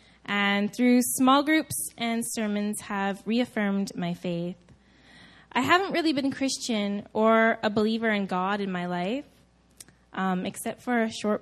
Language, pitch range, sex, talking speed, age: English, 185-235 Hz, female, 145 wpm, 10-29